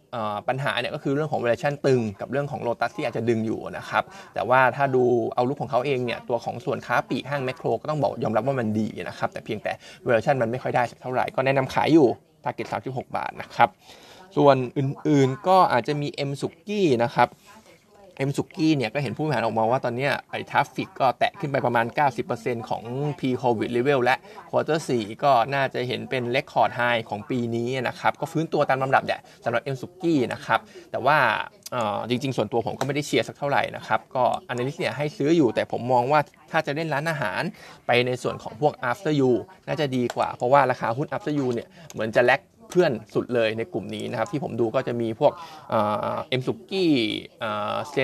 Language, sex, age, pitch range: Thai, male, 20-39, 120-150 Hz